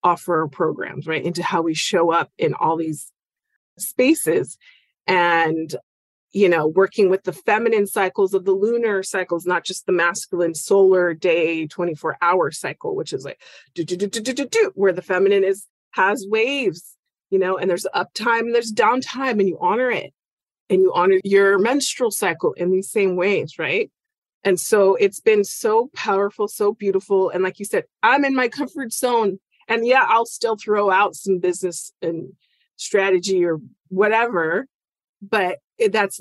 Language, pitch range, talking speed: English, 175-225 Hz, 165 wpm